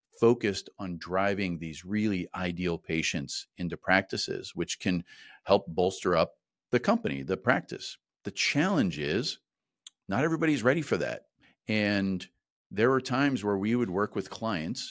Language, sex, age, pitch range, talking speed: English, male, 40-59, 85-100 Hz, 145 wpm